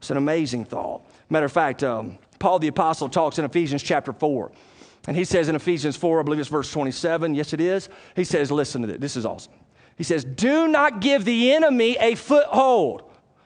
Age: 40-59